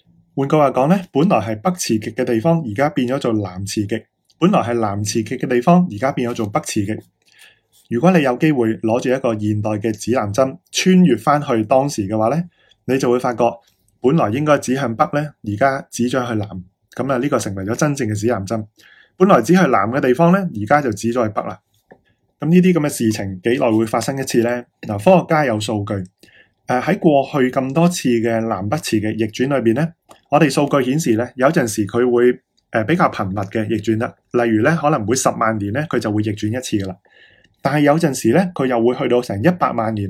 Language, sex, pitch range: Chinese, male, 110-145 Hz